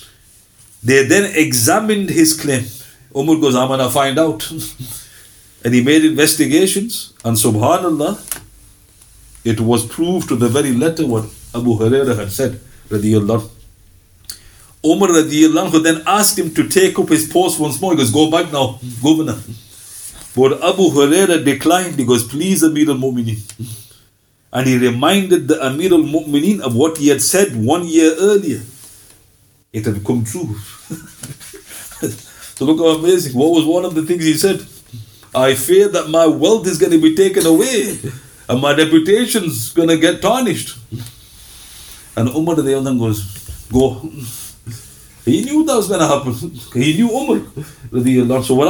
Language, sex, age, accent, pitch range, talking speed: English, male, 50-69, Indian, 115-160 Hz, 160 wpm